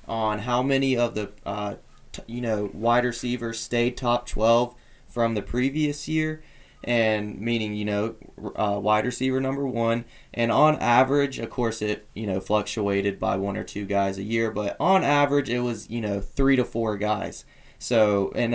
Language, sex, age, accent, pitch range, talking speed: English, male, 20-39, American, 110-135 Hz, 180 wpm